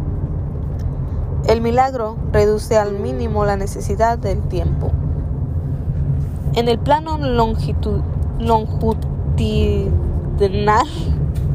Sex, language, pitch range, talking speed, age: female, Spanish, 75-100 Hz, 70 wpm, 20-39